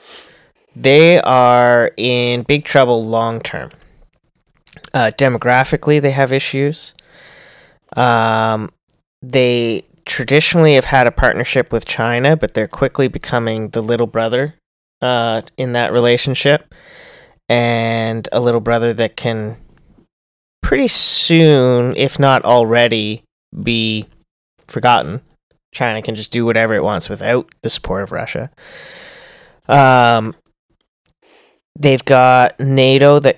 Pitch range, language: 115-135 Hz, English